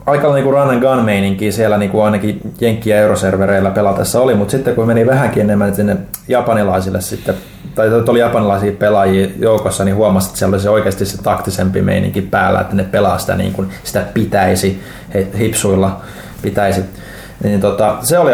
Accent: native